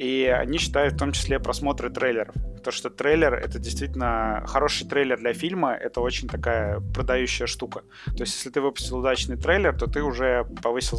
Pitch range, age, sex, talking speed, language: 120-145 Hz, 30-49, male, 180 wpm, Russian